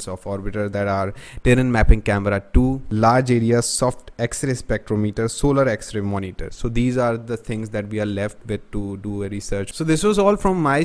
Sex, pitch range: male, 105-125 Hz